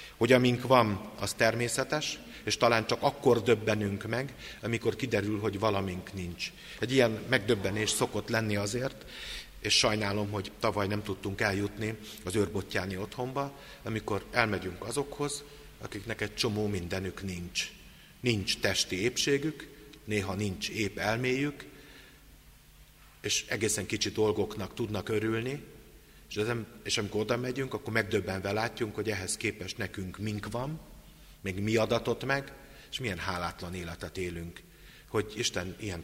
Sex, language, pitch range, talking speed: male, Hungarian, 100-125 Hz, 130 wpm